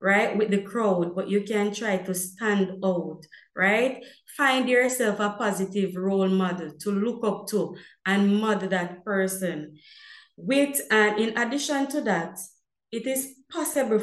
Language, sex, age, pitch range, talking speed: English, female, 20-39, 190-240 Hz, 155 wpm